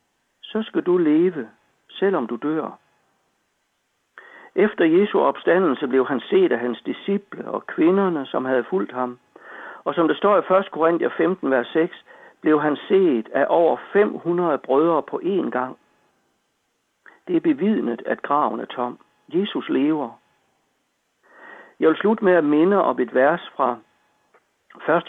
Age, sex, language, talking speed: 60-79, male, Danish, 150 wpm